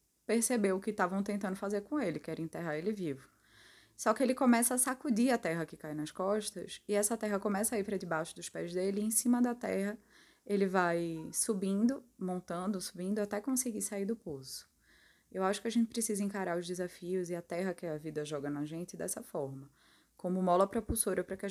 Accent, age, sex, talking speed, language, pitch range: Brazilian, 20-39, female, 215 wpm, Portuguese, 170-210 Hz